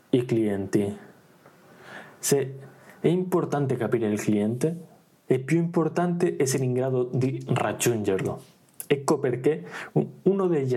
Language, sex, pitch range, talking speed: Italian, male, 120-170 Hz, 110 wpm